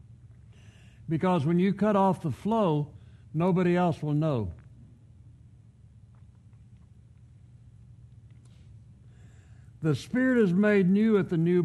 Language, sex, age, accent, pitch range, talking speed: English, male, 60-79, American, 115-190 Hz, 100 wpm